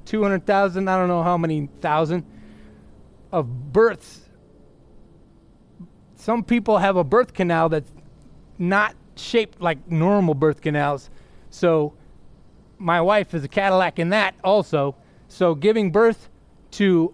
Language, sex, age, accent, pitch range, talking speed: English, male, 30-49, American, 160-210 Hz, 125 wpm